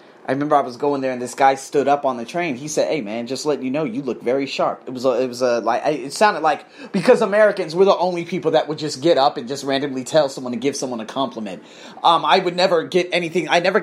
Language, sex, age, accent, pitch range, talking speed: English, male, 30-49, American, 150-210 Hz, 280 wpm